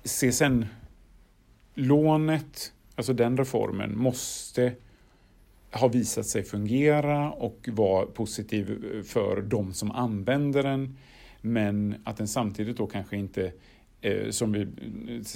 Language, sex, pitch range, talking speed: Swedish, male, 100-120 Hz, 115 wpm